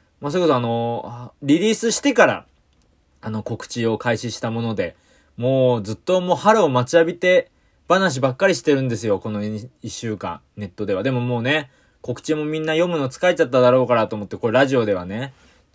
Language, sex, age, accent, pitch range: Japanese, male, 20-39, native, 110-155 Hz